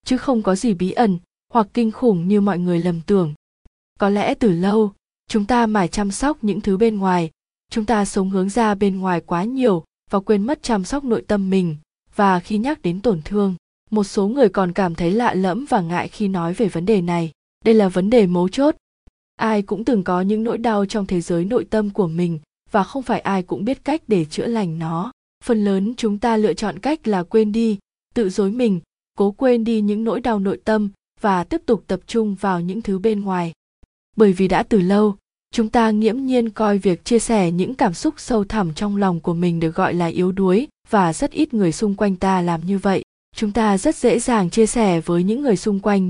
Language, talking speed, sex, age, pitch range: Vietnamese, 230 wpm, female, 20-39, 190-230 Hz